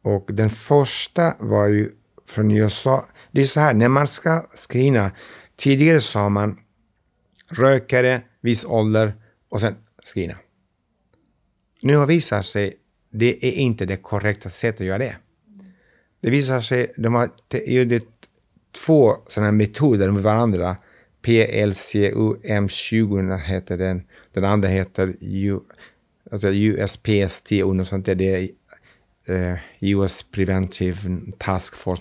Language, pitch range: Swedish, 100-125 Hz